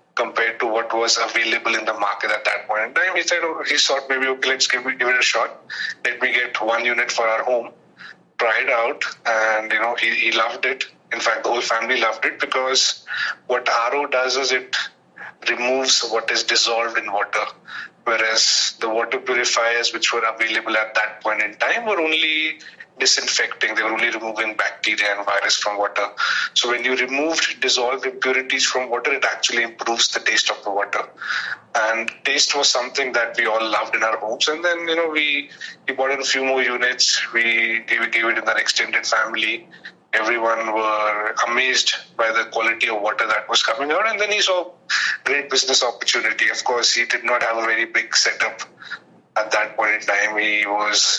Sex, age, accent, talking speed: male, 30-49, Indian, 200 wpm